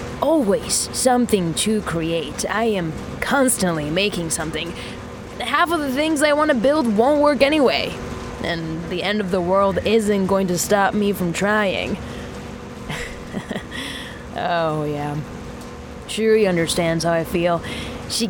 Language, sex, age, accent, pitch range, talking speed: English, female, 20-39, American, 175-225 Hz, 135 wpm